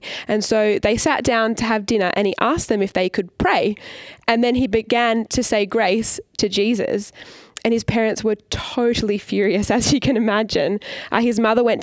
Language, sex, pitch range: English, female, 190-230 Hz